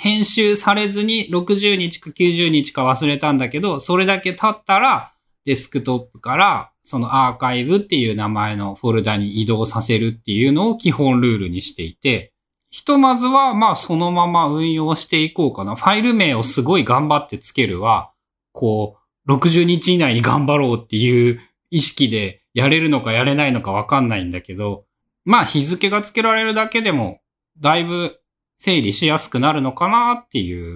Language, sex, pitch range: Japanese, male, 115-175 Hz